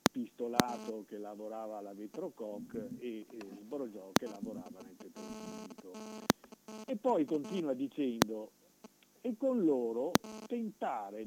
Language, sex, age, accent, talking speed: Italian, male, 50-69, native, 105 wpm